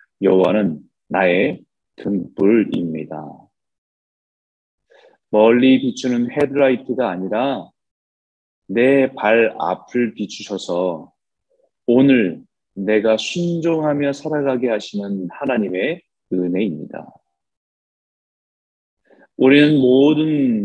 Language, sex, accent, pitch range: Korean, male, native, 95-130 Hz